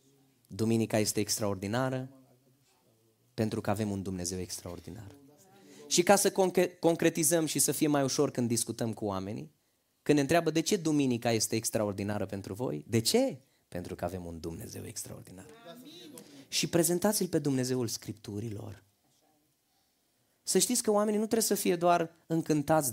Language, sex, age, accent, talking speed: Romanian, male, 30-49, native, 145 wpm